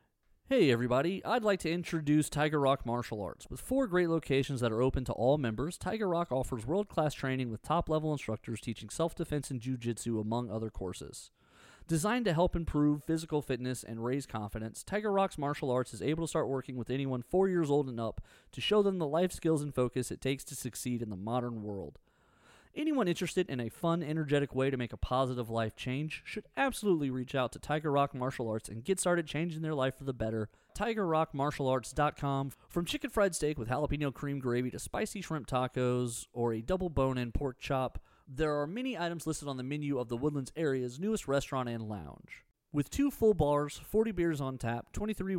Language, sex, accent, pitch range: English, male, American, 125-165 Hz